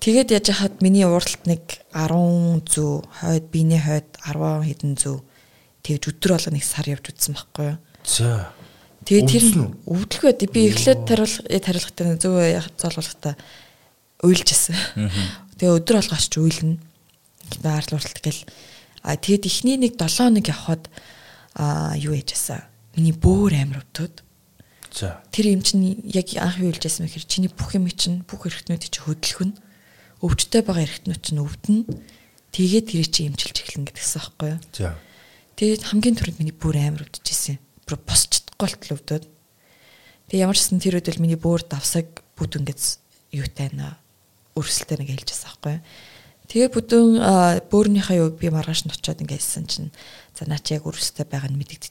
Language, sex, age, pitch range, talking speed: English, female, 20-39, 145-180 Hz, 100 wpm